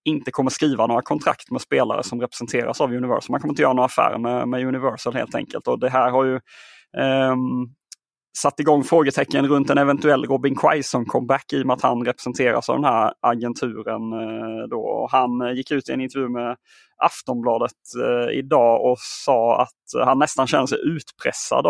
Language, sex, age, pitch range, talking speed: Swedish, male, 30-49, 120-140 Hz, 195 wpm